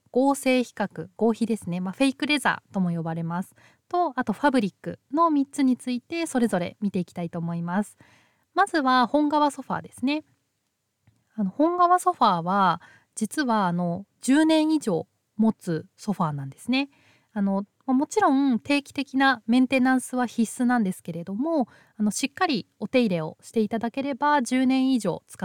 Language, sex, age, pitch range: Japanese, female, 20-39, 180-270 Hz